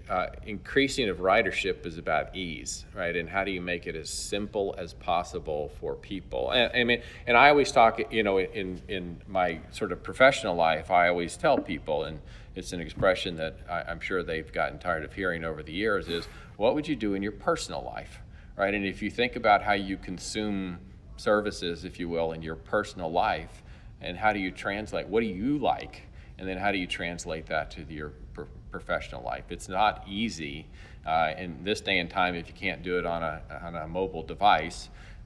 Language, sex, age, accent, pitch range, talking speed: English, male, 40-59, American, 80-100 Hz, 205 wpm